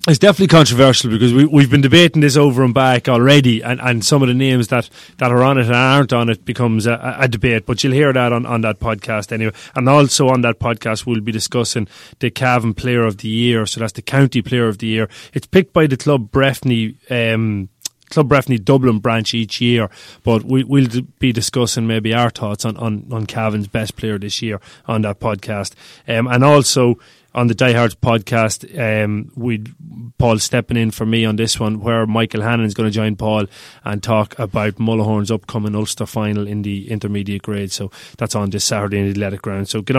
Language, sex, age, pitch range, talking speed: English, male, 30-49, 110-130 Hz, 215 wpm